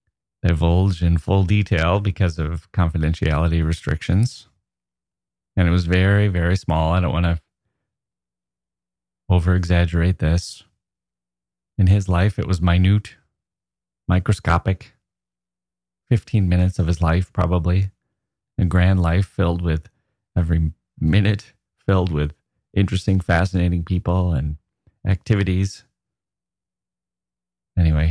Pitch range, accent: 80-95 Hz, American